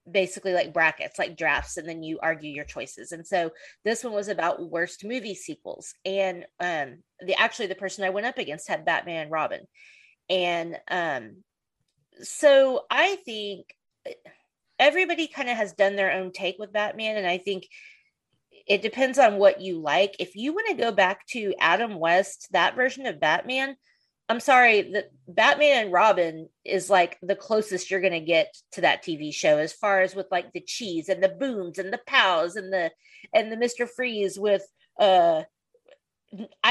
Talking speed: 180 wpm